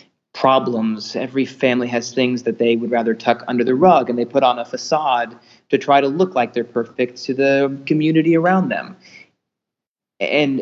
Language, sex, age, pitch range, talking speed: English, male, 30-49, 120-140 Hz, 180 wpm